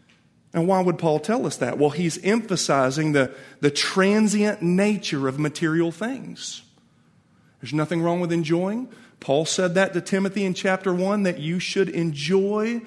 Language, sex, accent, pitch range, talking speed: English, male, American, 150-205 Hz, 160 wpm